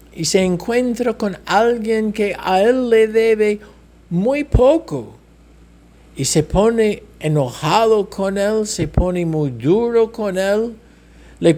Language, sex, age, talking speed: English, male, 60-79, 130 wpm